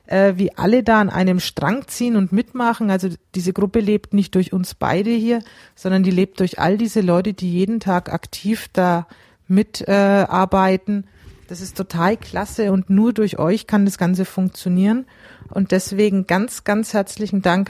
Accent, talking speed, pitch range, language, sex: German, 170 wpm, 170-205 Hz, German, female